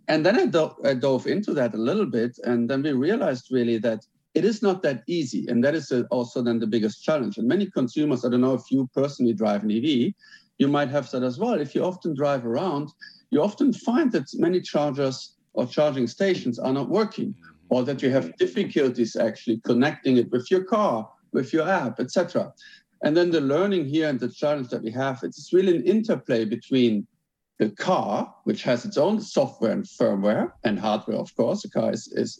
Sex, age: male, 50-69